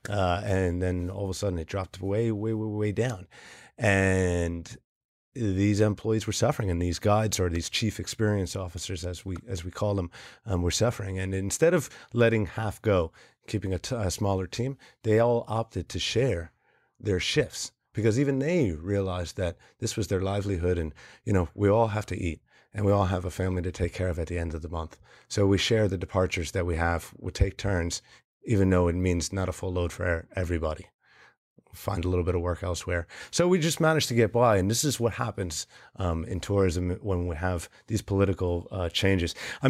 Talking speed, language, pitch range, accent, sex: 210 wpm, English, 90-110 Hz, American, male